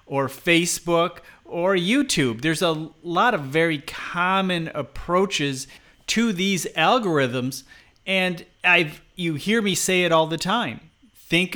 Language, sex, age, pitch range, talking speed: English, male, 40-59, 140-175 Hz, 130 wpm